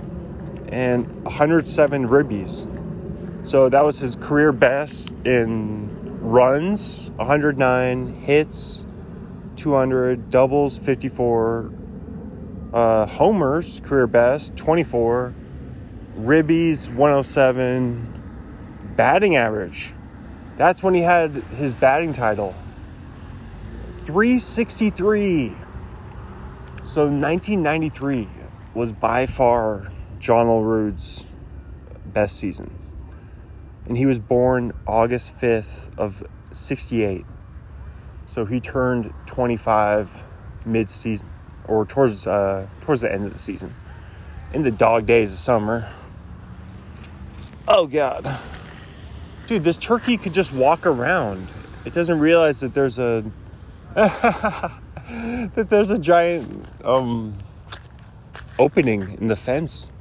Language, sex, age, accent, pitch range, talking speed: English, male, 20-39, American, 100-145 Hz, 95 wpm